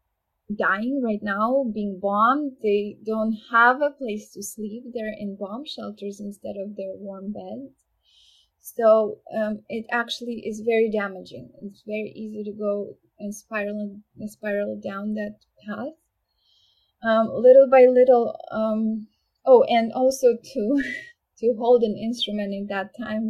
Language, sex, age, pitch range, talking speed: English, female, 10-29, 205-230 Hz, 145 wpm